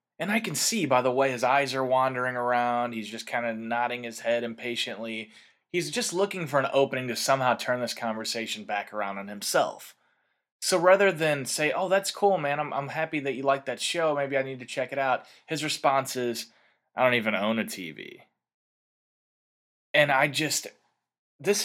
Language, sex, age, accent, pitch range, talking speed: English, male, 20-39, American, 120-150 Hz, 195 wpm